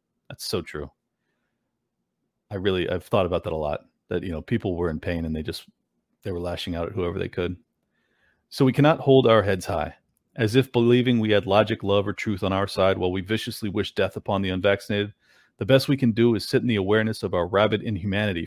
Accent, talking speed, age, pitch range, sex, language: American, 225 wpm, 40-59, 100-120 Hz, male, English